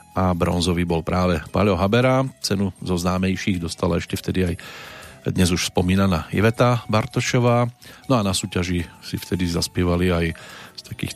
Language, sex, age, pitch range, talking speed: Slovak, male, 40-59, 90-105 Hz, 150 wpm